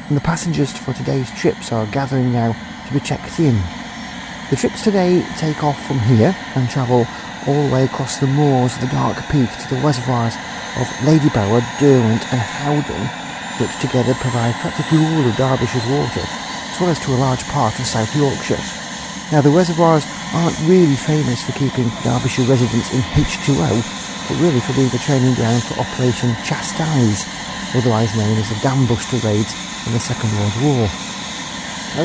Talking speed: 170 wpm